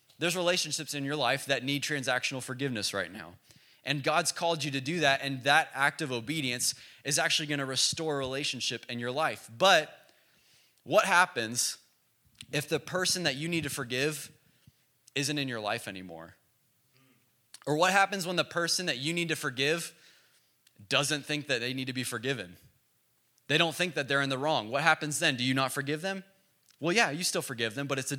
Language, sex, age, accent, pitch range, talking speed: English, male, 20-39, American, 130-155 Hz, 200 wpm